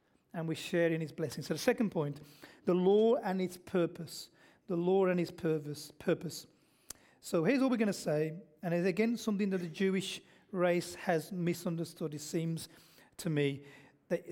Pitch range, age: 165-235 Hz, 40-59